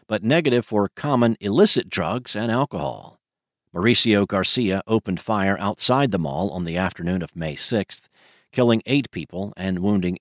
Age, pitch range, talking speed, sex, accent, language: 50-69, 95-125 Hz, 155 wpm, male, American, English